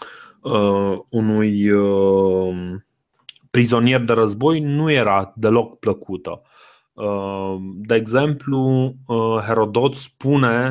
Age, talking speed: 20-39, 90 wpm